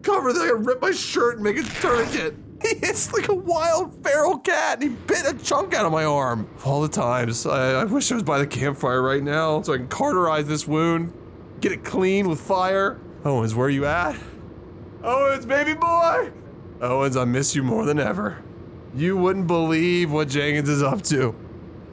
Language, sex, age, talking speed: English, male, 20-39, 210 wpm